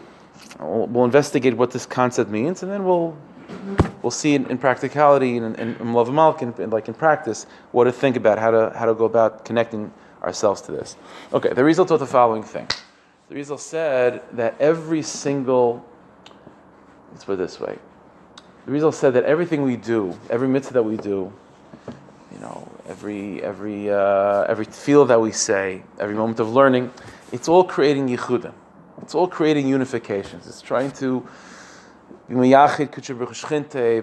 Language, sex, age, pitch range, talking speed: English, male, 30-49, 115-140 Hz, 160 wpm